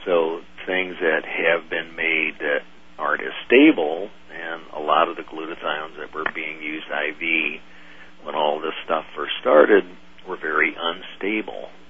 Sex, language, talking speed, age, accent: male, English, 150 wpm, 50-69, American